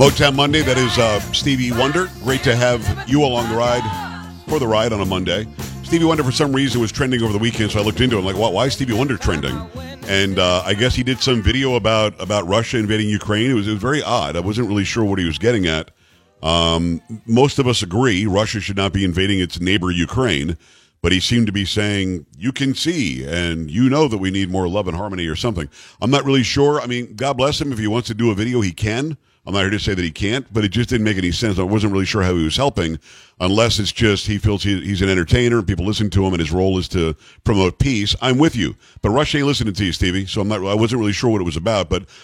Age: 50-69